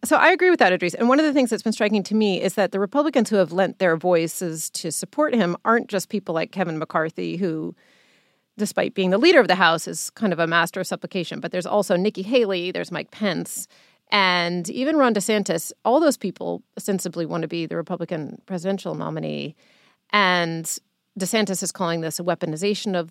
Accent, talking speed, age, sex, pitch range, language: American, 210 wpm, 30-49, female, 160-205 Hz, English